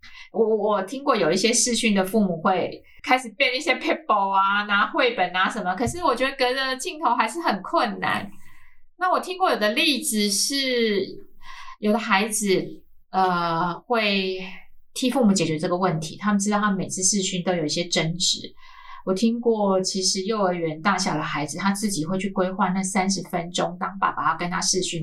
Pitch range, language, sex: 180-220 Hz, Chinese, female